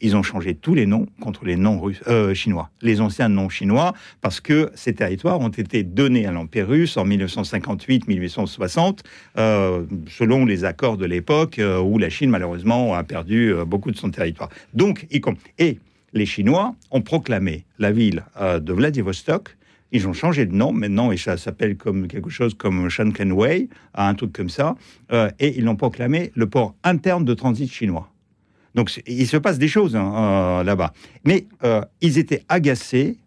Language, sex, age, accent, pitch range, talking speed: French, male, 60-79, French, 95-130 Hz, 185 wpm